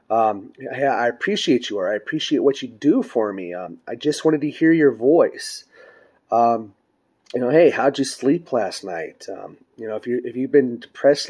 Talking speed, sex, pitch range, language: 205 wpm, male, 115-160 Hz, English